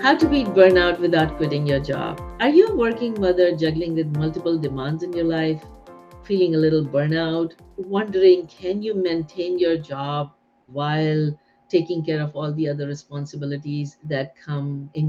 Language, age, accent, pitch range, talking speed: English, 50-69, Indian, 150-200 Hz, 165 wpm